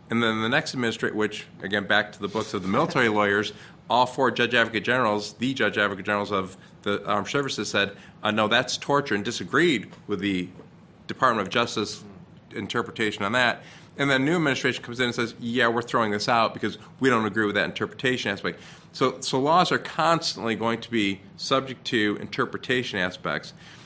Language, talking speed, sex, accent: English, 190 wpm, male, American